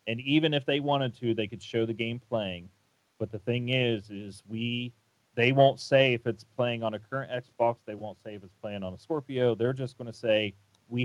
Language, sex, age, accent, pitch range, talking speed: English, male, 40-59, American, 105-120 Hz, 235 wpm